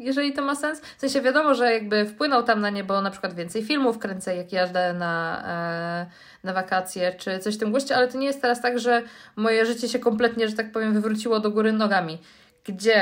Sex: female